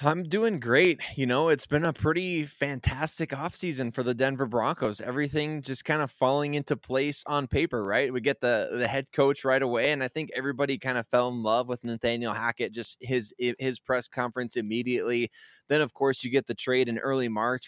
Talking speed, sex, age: 210 wpm, male, 20-39